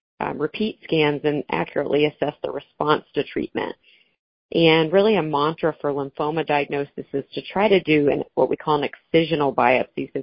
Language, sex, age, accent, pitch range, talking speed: English, female, 40-59, American, 140-160 Hz, 170 wpm